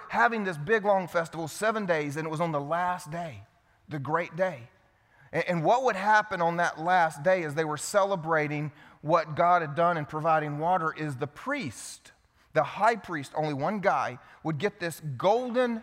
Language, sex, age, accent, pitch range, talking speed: English, male, 30-49, American, 155-220 Hz, 190 wpm